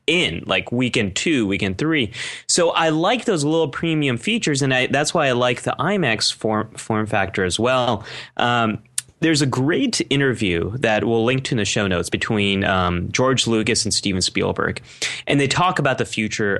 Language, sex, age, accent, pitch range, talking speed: English, male, 30-49, American, 105-145 Hz, 185 wpm